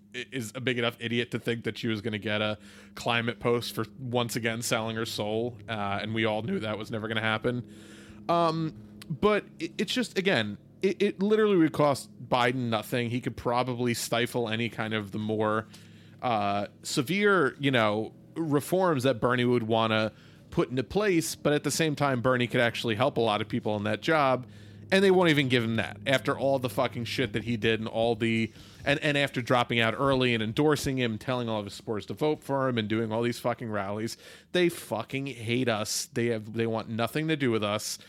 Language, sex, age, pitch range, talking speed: English, male, 30-49, 110-145 Hz, 215 wpm